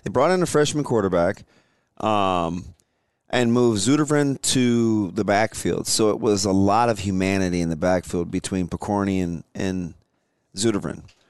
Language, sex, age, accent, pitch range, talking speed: English, male, 30-49, American, 95-120 Hz, 150 wpm